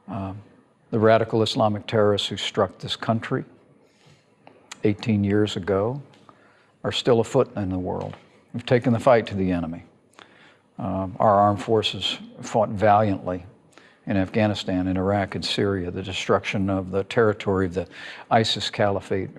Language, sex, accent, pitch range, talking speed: English, male, American, 95-110 Hz, 140 wpm